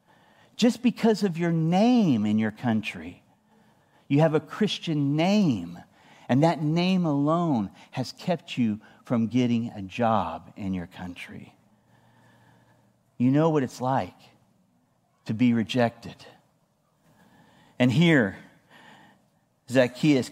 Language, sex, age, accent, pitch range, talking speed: English, male, 50-69, American, 120-180 Hz, 110 wpm